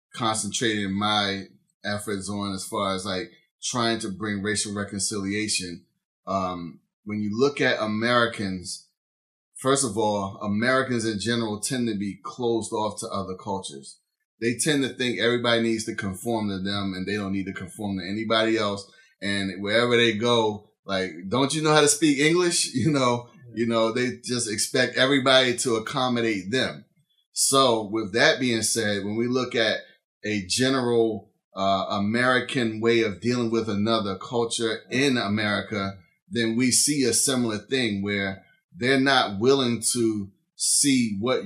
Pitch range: 105-130 Hz